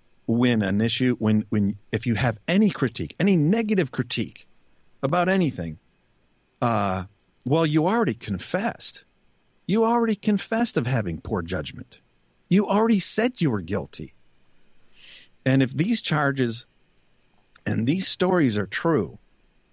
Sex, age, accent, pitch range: male, 50-69, American, 100-155 Hz